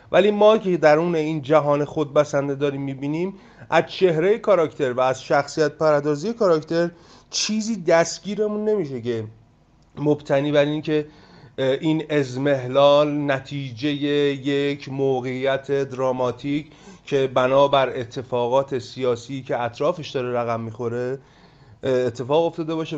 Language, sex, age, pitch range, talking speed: Persian, male, 30-49, 130-170 Hz, 115 wpm